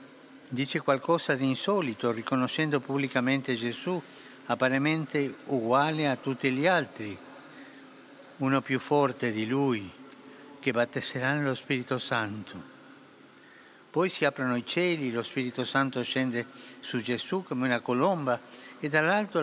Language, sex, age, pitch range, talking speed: English, male, 60-79, 125-175 Hz, 120 wpm